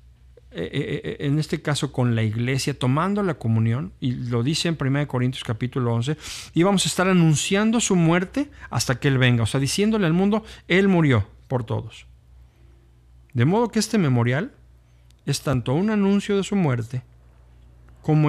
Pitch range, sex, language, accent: 110-170 Hz, male, Spanish, Mexican